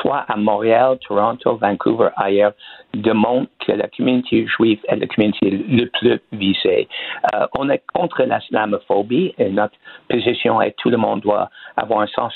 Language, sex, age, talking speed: French, male, 60-79, 165 wpm